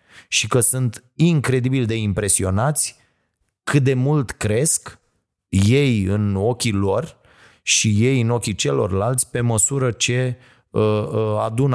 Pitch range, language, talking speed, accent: 95-115 Hz, Romanian, 115 wpm, native